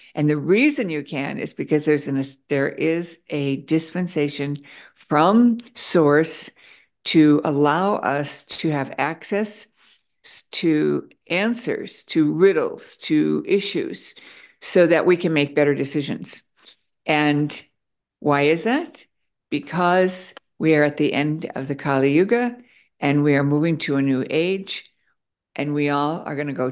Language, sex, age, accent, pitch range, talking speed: English, female, 60-79, American, 140-165 Hz, 140 wpm